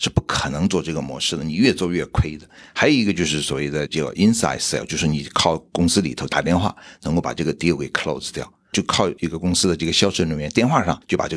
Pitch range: 80-100 Hz